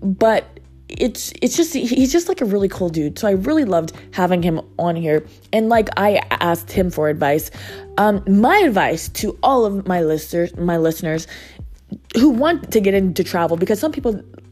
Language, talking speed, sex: English, 185 wpm, female